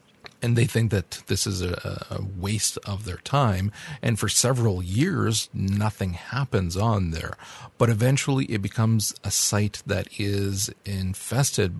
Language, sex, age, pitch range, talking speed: English, male, 40-59, 95-115 Hz, 145 wpm